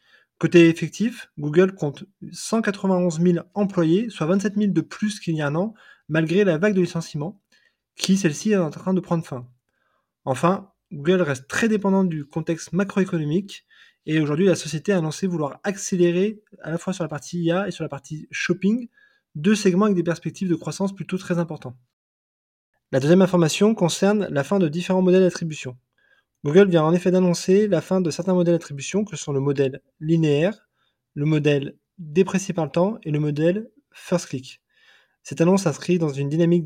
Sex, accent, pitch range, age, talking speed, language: male, French, 155-190 Hz, 20-39, 180 wpm, French